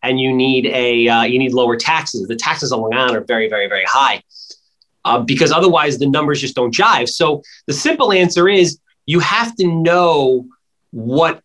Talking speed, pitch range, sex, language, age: 195 wpm, 130-175 Hz, male, English, 30-49